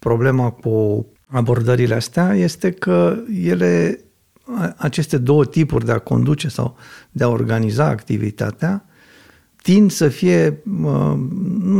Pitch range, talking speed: 115-155 Hz, 110 wpm